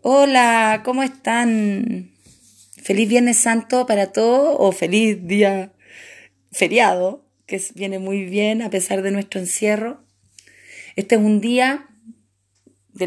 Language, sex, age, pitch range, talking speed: Spanish, female, 30-49, 185-235 Hz, 120 wpm